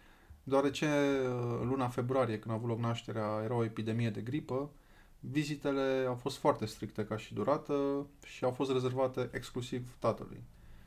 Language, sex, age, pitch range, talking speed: Romanian, male, 20-39, 110-130 Hz, 155 wpm